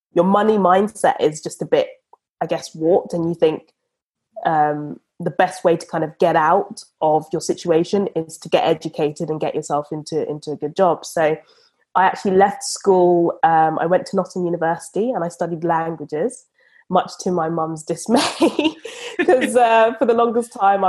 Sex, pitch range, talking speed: female, 160-205 Hz, 180 wpm